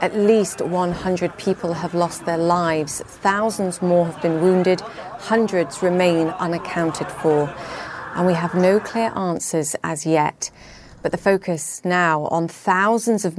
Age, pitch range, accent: 30-49, 165-185 Hz, British